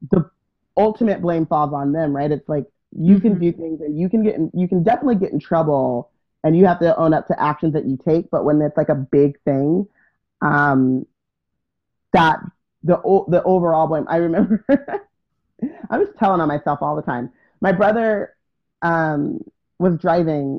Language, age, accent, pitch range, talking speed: English, 30-49, American, 155-205 Hz, 185 wpm